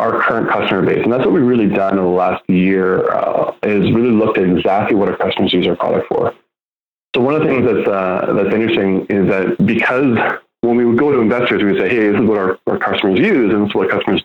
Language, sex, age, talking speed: English, male, 20-39, 255 wpm